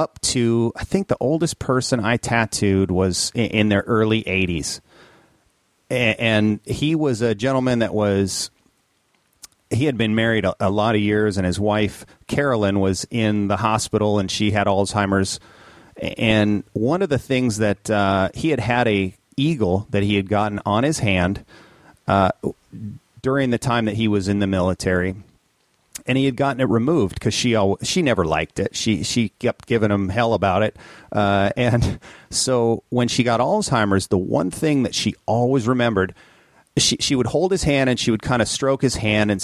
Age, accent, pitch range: 30-49, American, 100-125 Hz